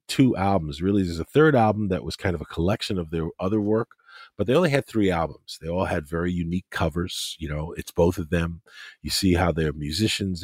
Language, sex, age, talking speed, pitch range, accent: English, male, 40-59, 230 wpm, 85-130 Hz, American